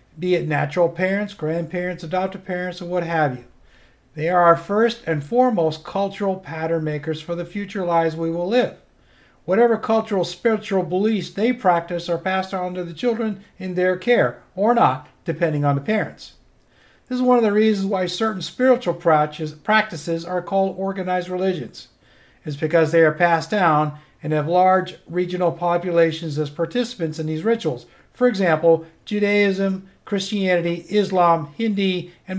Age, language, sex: 50-69, English, male